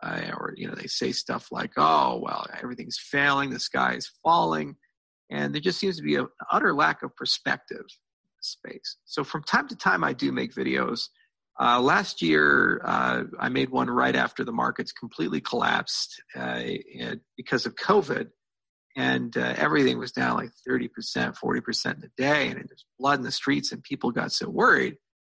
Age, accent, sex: 40-59, American, male